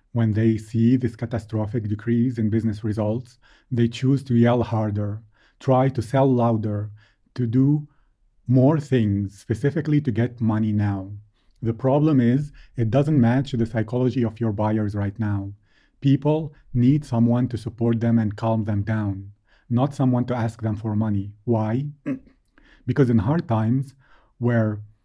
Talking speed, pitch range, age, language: 150 wpm, 110-130 Hz, 30-49, English